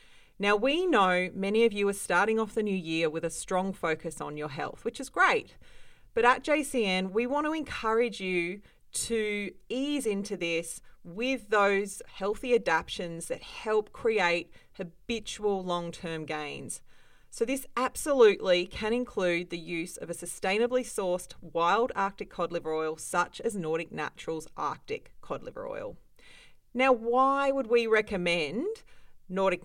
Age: 30-49